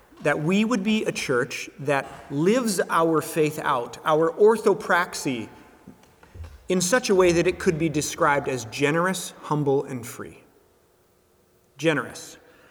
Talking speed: 130 wpm